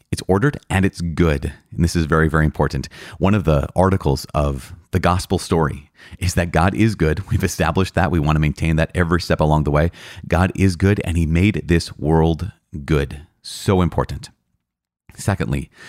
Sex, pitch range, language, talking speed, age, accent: male, 80-100 Hz, English, 185 wpm, 30-49, American